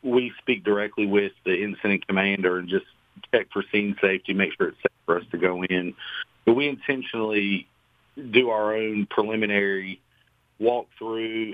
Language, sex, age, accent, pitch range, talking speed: English, male, 50-69, American, 95-115 Hz, 155 wpm